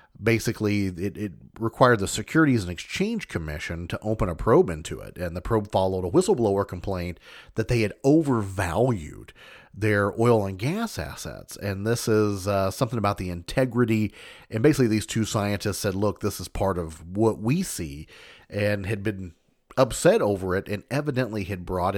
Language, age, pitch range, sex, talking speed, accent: English, 30-49, 95-120 Hz, male, 170 wpm, American